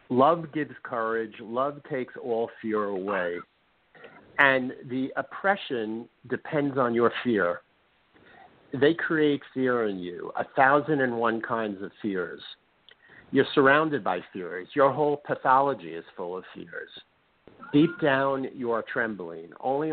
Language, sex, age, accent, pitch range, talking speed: English, male, 50-69, American, 110-140 Hz, 135 wpm